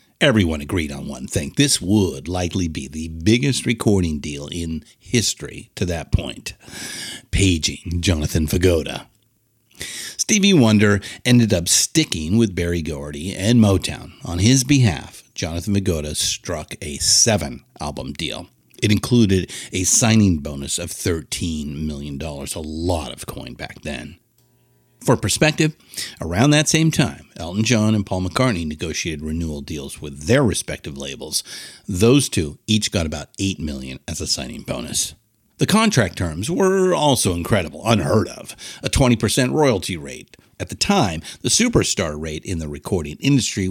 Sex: male